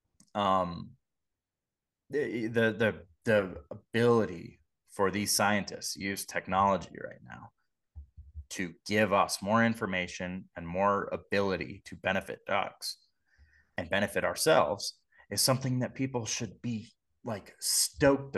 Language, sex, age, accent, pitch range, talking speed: English, male, 30-49, American, 90-115 Hz, 115 wpm